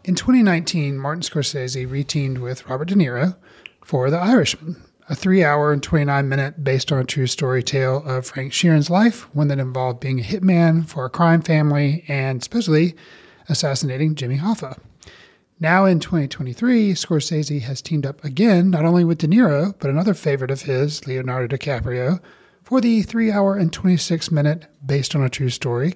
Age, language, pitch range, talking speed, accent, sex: 30-49, English, 135-180 Hz, 165 wpm, American, male